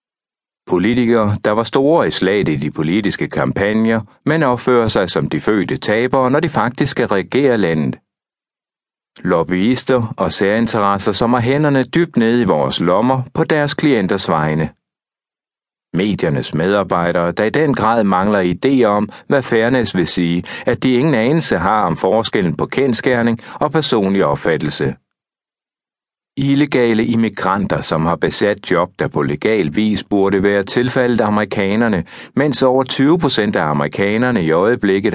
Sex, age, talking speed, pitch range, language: male, 60-79, 145 wpm, 100-130 Hz, Danish